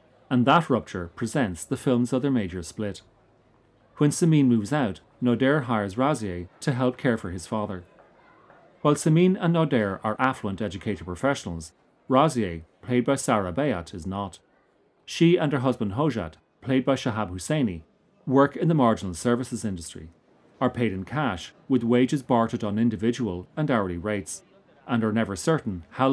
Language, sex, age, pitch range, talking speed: English, male, 40-59, 100-140 Hz, 160 wpm